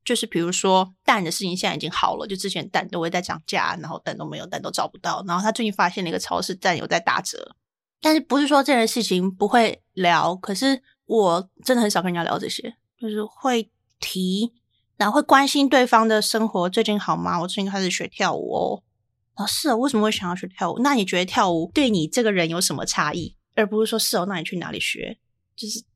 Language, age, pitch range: Chinese, 20-39, 185-230 Hz